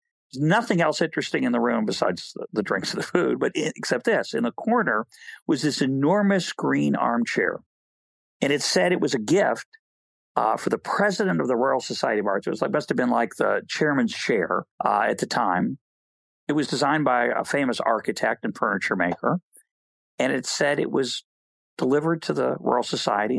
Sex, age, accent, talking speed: male, 50-69, American, 185 wpm